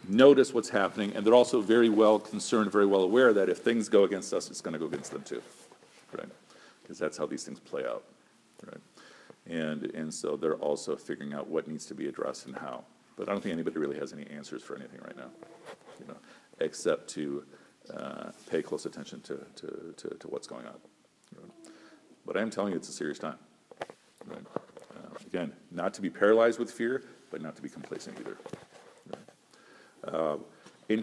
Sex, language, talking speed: male, English, 200 wpm